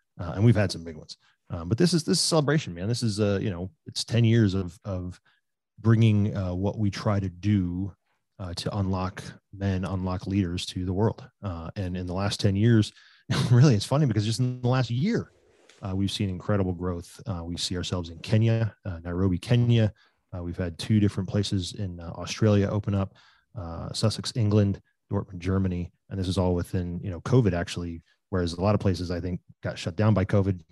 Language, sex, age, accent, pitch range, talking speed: English, male, 30-49, American, 95-110 Hz, 210 wpm